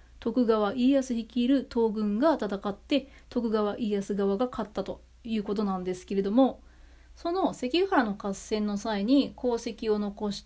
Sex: female